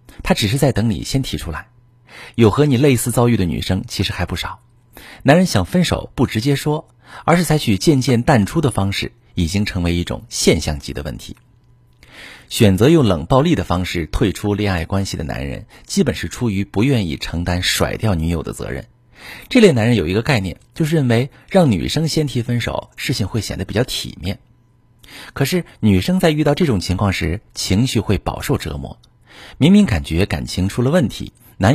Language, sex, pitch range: Chinese, male, 95-130 Hz